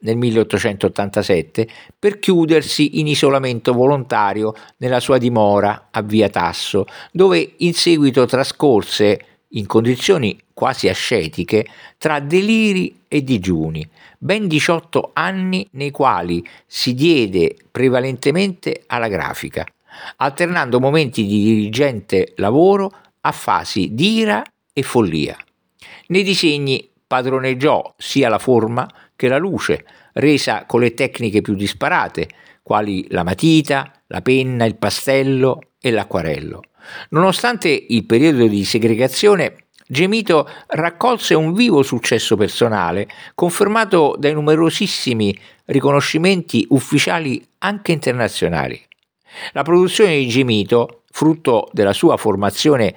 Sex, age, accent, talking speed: male, 50-69, native, 110 wpm